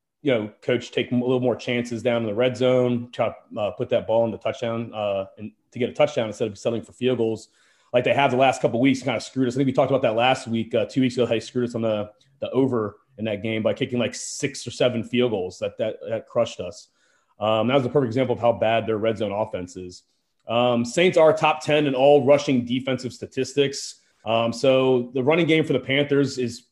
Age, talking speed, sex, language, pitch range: 30-49, 260 wpm, male, English, 115-140 Hz